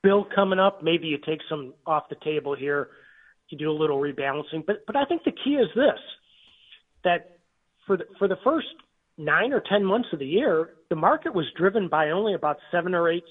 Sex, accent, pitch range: male, American, 145-200 Hz